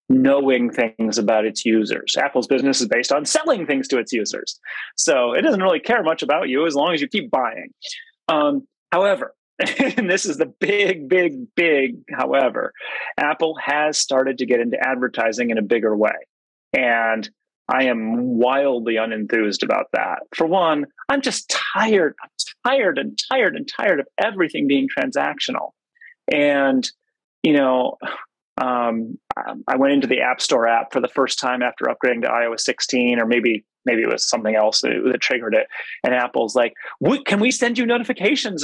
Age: 30-49